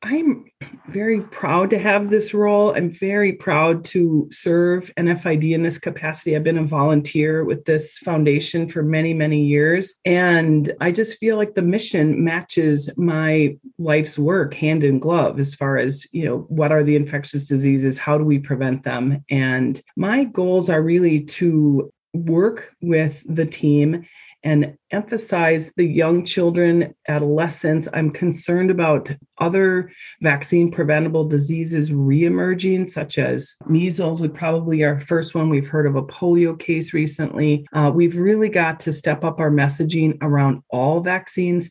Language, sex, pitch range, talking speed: English, female, 150-175 Hz, 150 wpm